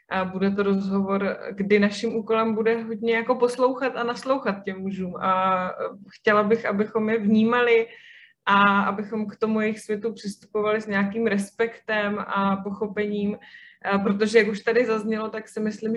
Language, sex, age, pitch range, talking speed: Czech, female, 20-39, 195-220 Hz, 160 wpm